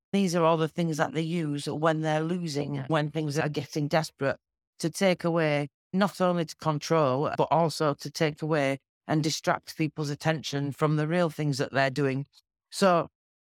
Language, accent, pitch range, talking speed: English, British, 140-165 Hz, 180 wpm